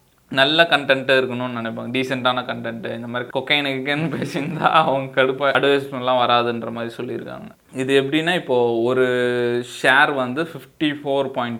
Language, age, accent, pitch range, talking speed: Tamil, 20-39, native, 120-140 Hz, 135 wpm